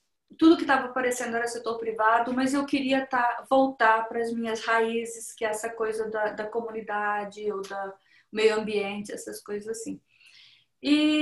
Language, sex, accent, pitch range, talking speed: English, female, Brazilian, 230-290 Hz, 165 wpm